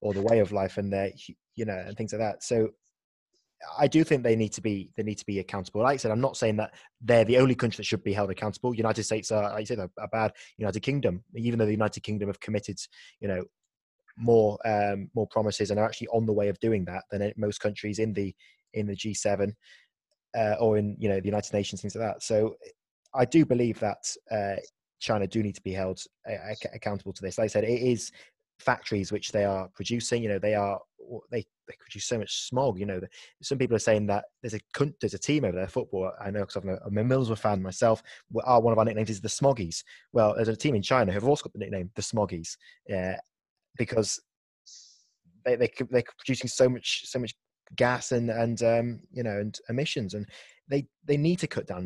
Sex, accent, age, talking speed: male, British, 20-39, 235 wpm